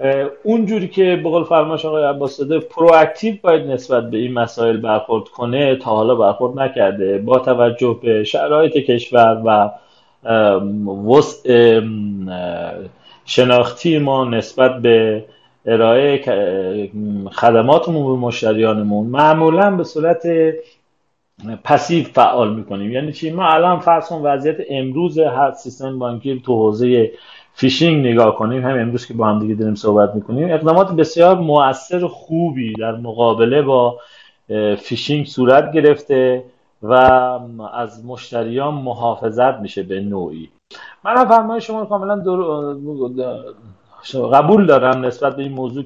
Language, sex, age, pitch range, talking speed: Persian, male, 40-59, 115-155 Hz, 120 wpm